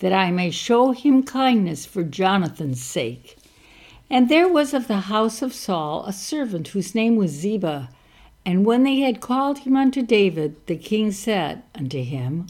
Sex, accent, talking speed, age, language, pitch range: female, American, 175 wpm, 60-79, English, 180-255 Hz